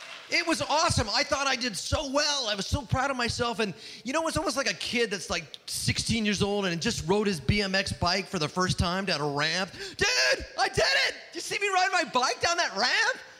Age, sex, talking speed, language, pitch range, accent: 30-49, male, 245 wpm, English, 175-290 Hz, American